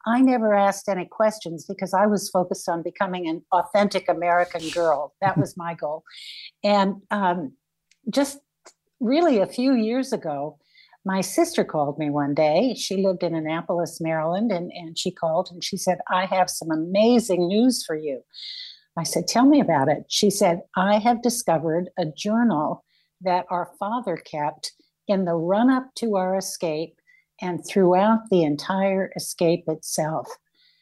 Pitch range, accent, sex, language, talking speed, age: 170-225 Hz, American, female, English, 160 wpm, 60-79